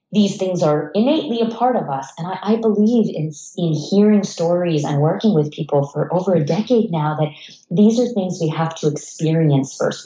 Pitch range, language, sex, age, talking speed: 150-190 Hz, English, female, 30-49, 205 wpm